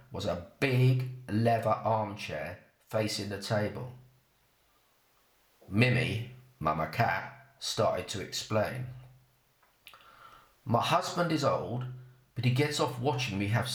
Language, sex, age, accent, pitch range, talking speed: English, male, 40-59, British, 120-140 Hz, 110 wpm